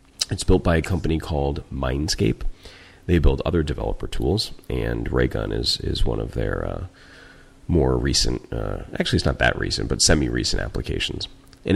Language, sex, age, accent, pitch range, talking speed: English, male, 30-49, American, 65-90 Hz, 165 wpm